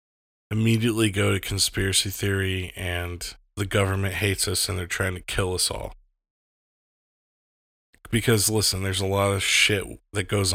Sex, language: male, English